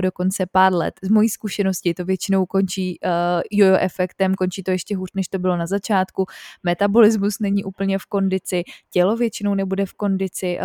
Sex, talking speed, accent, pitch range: female, 170 wpm, native, 185-205 Hz